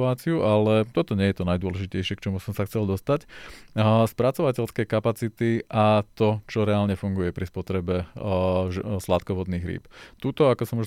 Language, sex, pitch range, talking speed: Slovak, male, 95-115 Hz, 155 wpm